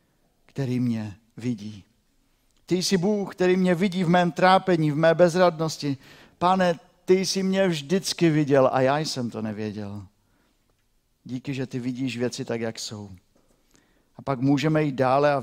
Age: 50-69